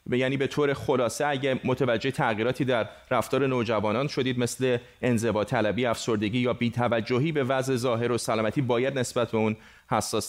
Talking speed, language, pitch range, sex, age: 165 wpm, Persian, 115-135 Hz, male, 30-49